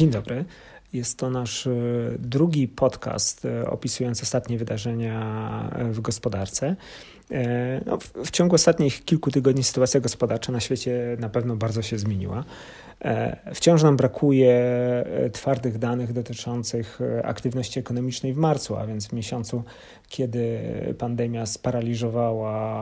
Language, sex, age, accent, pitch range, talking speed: Polish, male, 40-59, native, 115-130 Hz, 115 wpm